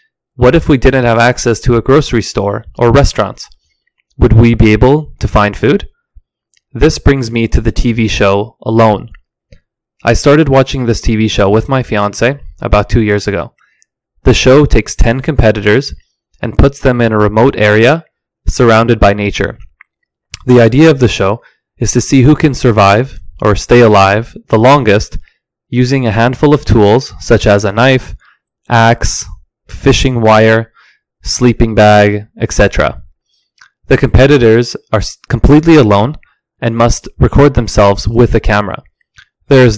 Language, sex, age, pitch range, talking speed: English, male, 20-39, 105-130 Hz, 150 wpm